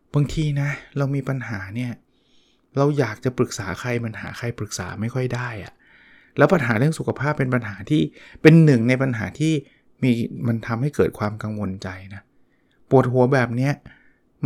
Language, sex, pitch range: Thai, male, 115-145 Hz